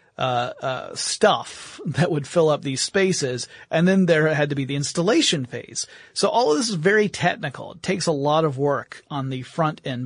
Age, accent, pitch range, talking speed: 30-49, American, 135-175 Hz, 210 wpm